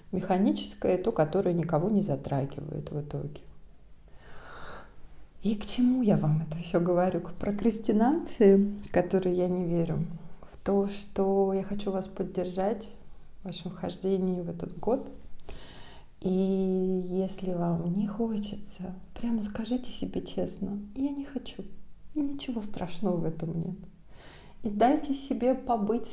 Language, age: Russian, 30-49